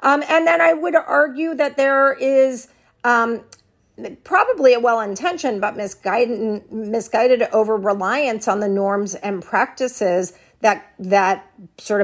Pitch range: 190-240 Hz